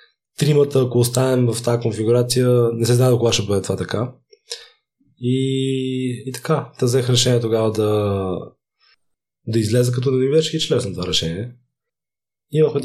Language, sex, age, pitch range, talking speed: Bulgarian, male, 20-39, 110-135 Hz, 155 wpm